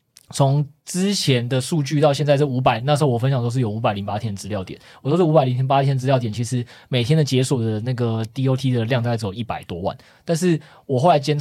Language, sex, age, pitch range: Chinese, male, 20-39, 115-145 Hz